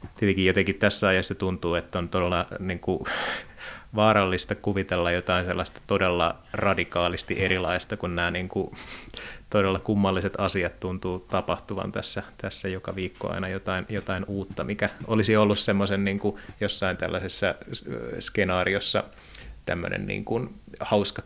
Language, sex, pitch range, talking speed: Finnish, male, 90-100 Hz, 105 wpm